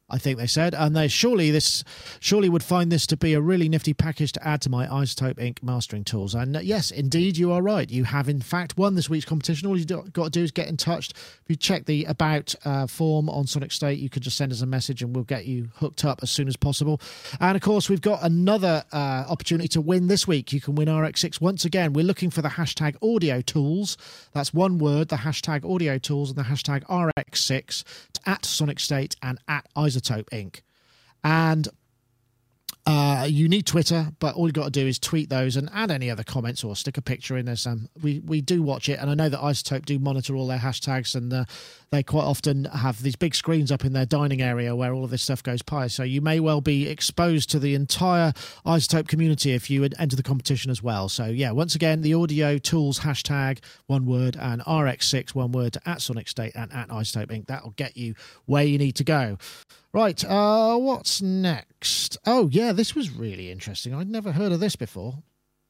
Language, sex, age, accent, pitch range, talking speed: English, male, 40-59, British, 130-165 Hz, 225 wpm